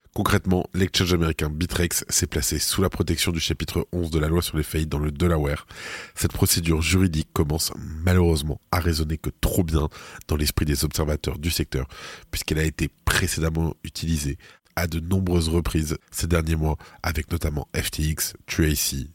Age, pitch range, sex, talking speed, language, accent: 20-39, 80-95 Hz, male, 165 wpm, French, French